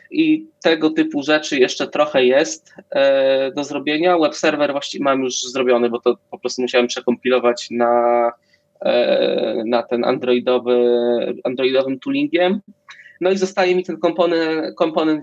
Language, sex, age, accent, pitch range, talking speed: Polish, male, 20-39, native, 125-150 Hz, 130 wpm